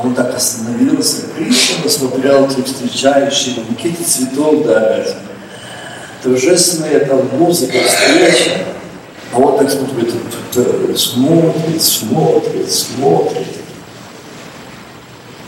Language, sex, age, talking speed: Russian, male, 60-79, 80 wpm